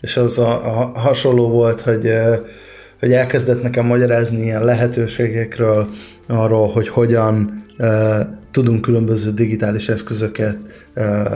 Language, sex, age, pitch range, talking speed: Hungarian, male, 20-39, 115-130 Hz, 115 wpm